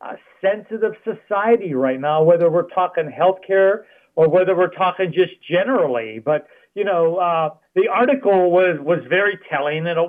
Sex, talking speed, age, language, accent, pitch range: male, 160 wpm, 50-69, English, American, 160-210 Hz